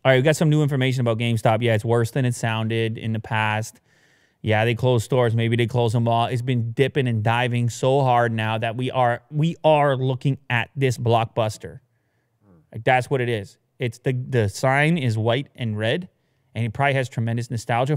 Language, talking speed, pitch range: English, 205 wpm, 115-155 Hz